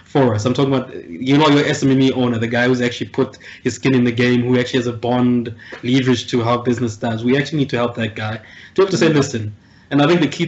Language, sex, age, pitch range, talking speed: English, male, 20-39, 120-135 Hz, 270 wpm